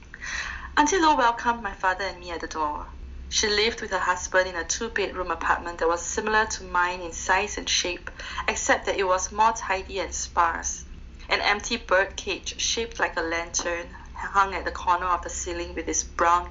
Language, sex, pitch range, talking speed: English, female, 170-215 Hz, 195 wpm